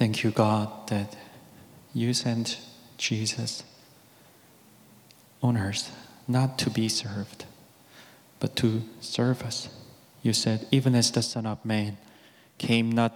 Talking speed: 125 wpm